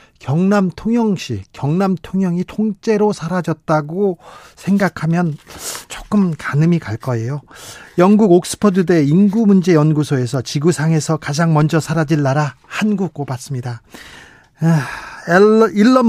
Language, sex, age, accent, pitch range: Korean, male, 40-59, native, 140-190 Hz